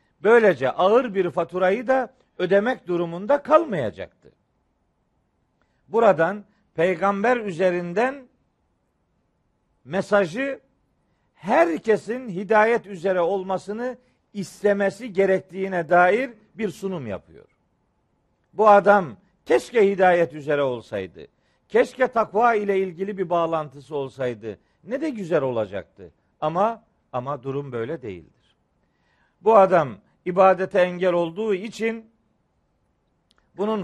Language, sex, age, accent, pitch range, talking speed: Turkish, male, 50-69, native, 165-215 Hz, 90 wpm